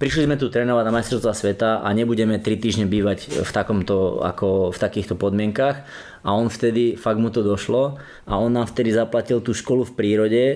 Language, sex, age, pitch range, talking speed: Slovak, male, 20-39, 115-140 Hz, 195 wpm